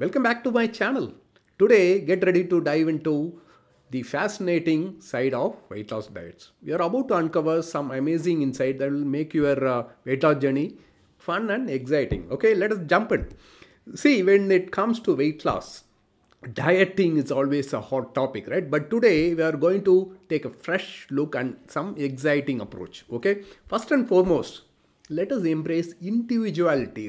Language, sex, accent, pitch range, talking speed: English, male, Indian, 145-195 Hz, 175 wpm